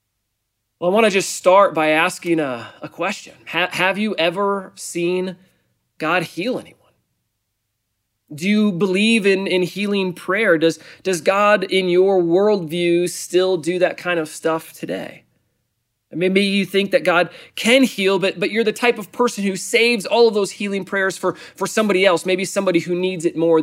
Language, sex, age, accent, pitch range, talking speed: English, male, 30-49, American, 150-190 Hz, 180 wpm